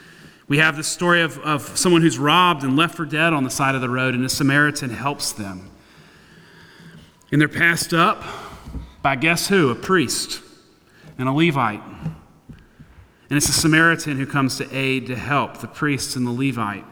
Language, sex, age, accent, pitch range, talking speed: English, male, 40-59, American, 140-185 Hz, 180 wpm